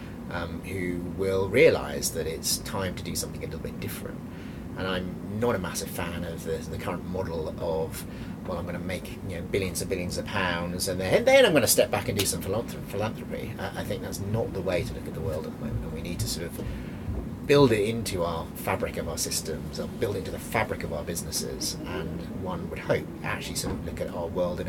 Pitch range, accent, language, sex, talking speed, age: 90-120 Hz, British, English, male, 230 wpm, 30-49